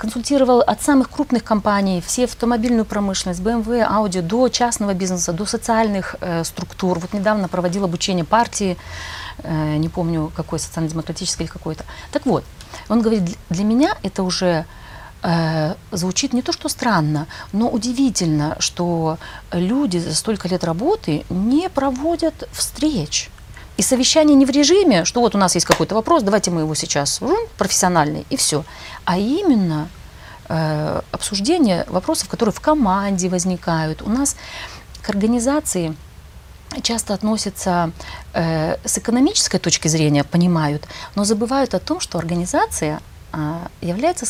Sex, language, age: female, Russian, 40-59